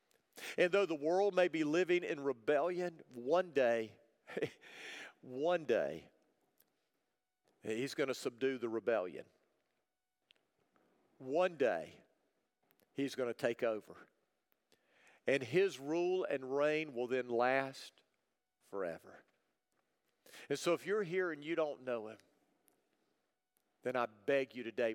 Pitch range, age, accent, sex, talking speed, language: 125-155 Hz, 50-69, American, male, 120 wpm, English